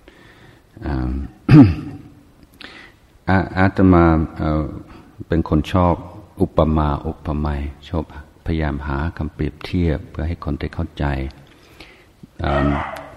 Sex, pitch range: male, 75-85 Hz